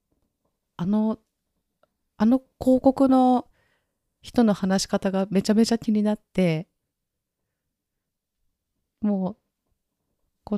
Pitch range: 165-210 Hz